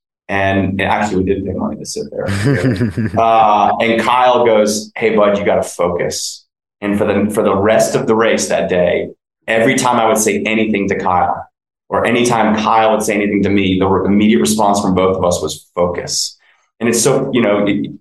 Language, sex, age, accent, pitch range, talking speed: English, male, 30-49, American, 95-110 Hz, 205 wpm